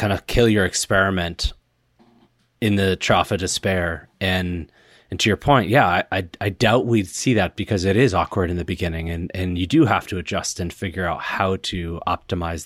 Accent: American